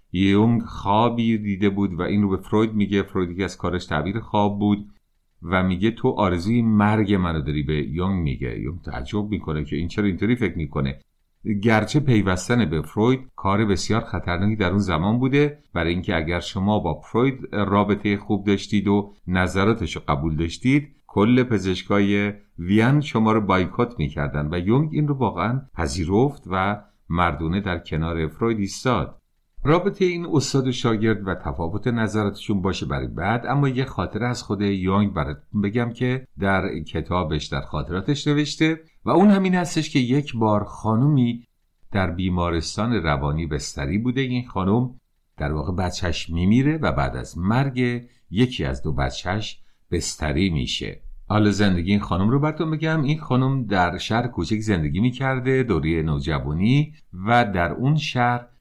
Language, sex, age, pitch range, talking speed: Persian, male, 50-69, 90-120 Hz, 160 wpm